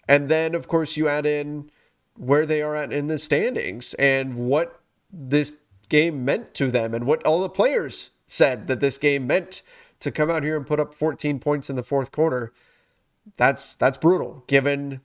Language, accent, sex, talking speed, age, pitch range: English, American, male, 190 wpm, 30-49, 130-170 Hz